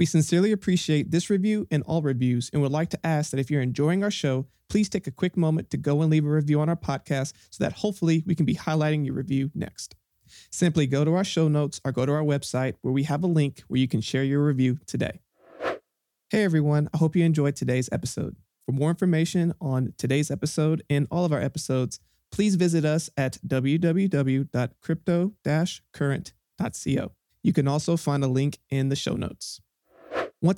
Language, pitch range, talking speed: English, 135-170 Hz, 200 wpm